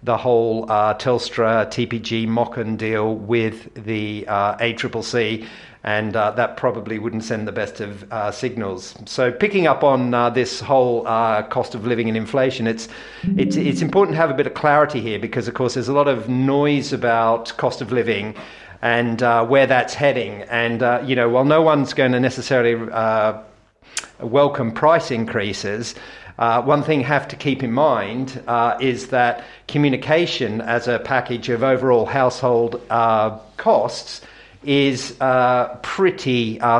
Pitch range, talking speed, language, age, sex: 115-135 Hz, 165 wpm, English, 50-69, male